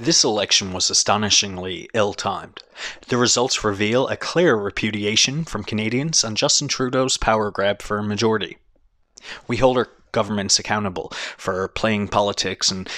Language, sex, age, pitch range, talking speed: English, male, 30-49, 100-120 Hz, 140 wpm